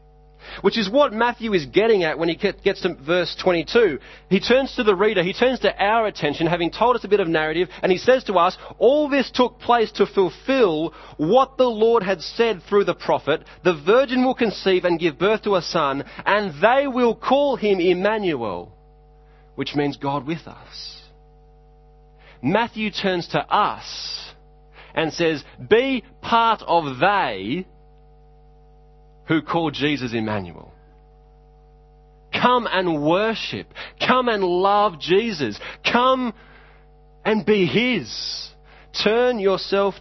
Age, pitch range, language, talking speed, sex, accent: 30-49, 150-210 Hz, English, 145 wpm, male, Australian